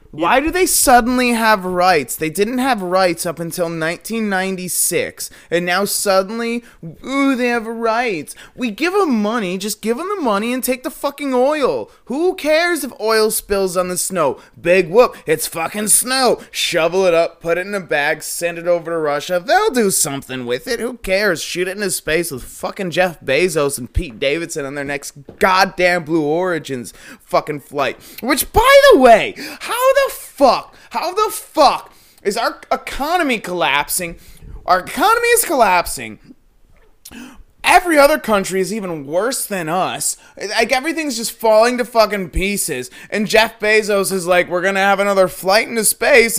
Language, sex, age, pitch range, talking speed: English, male, 20-39, 175-255 Hz, 170 wpm